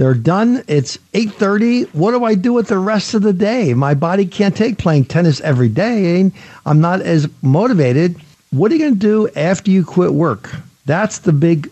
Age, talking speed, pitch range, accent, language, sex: 50-69, 200 wpm, 145-205 Hz, American, English, male